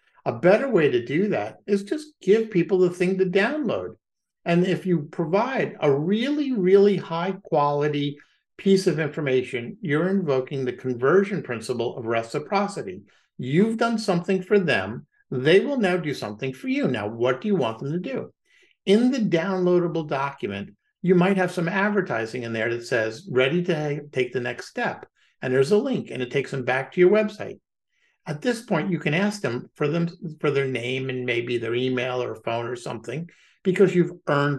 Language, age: English, 50-69